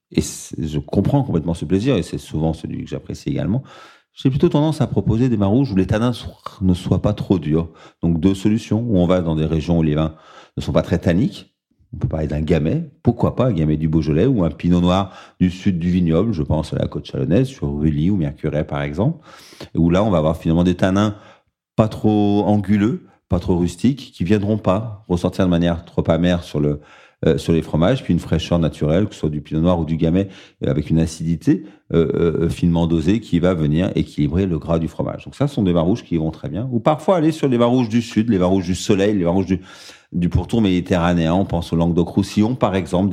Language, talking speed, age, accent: French, 240 wpm, 40-59, French